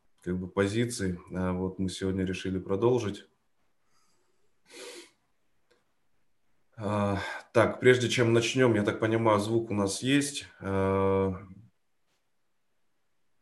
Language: Russian